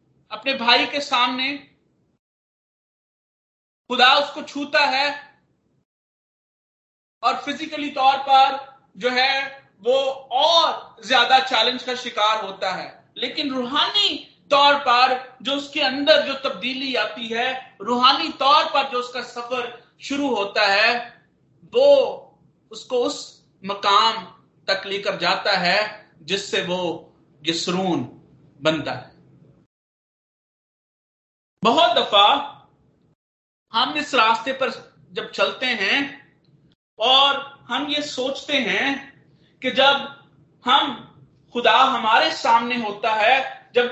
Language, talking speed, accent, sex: Hindi, 105 wpm, native, male